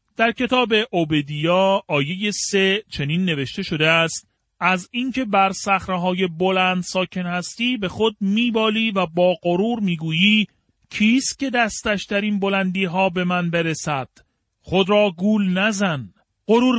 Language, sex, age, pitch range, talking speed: Persian, male, 40-59, 145-200 Hz, 135 wpm